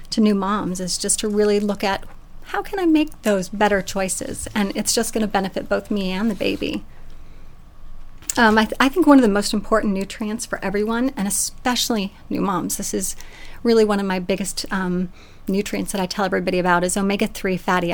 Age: 30-49